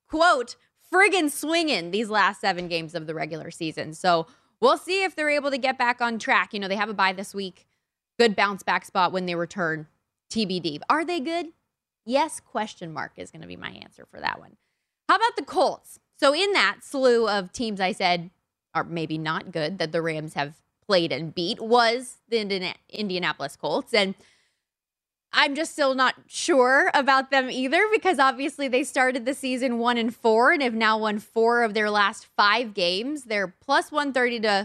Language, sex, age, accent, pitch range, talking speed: English, female, 20-39, American, 185-265 Hz, 195 wpm